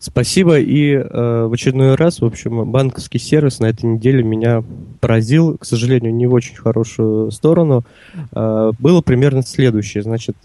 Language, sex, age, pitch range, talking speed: Russian, male, 20-39, 115-140 Hz, 155 wpm